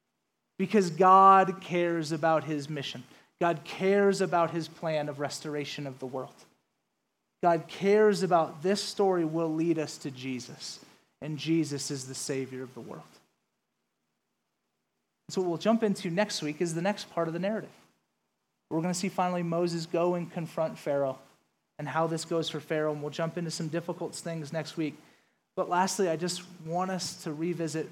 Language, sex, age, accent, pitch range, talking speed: English, male, 30-49, American, 140-170 Hz, 175 wpm